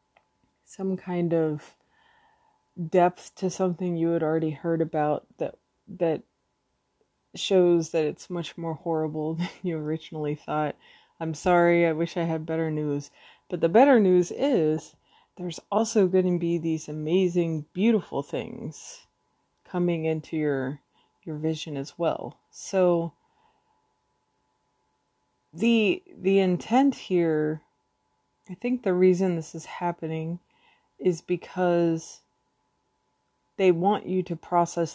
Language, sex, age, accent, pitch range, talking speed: English, female, 20-39, American, 155-180 Hz, 120 wpm